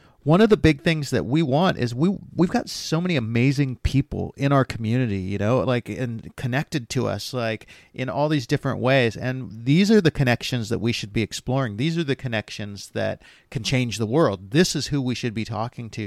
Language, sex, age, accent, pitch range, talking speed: English, male, 40-59, American, 110-140 Hz, 220 wpm